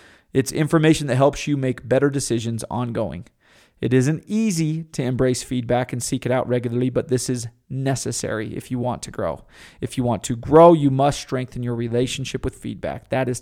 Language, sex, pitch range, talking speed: English, male, 125-155 Hz, 190 wpm